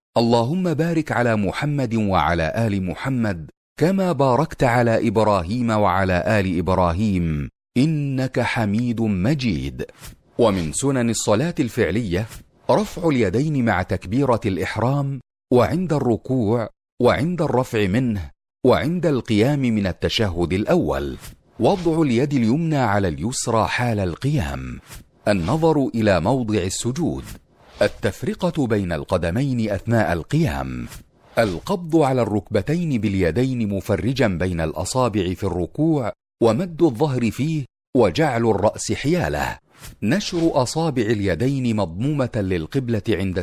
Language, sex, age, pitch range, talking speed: Arabic, male, 40-59, 100-140 Hz, 100 wpm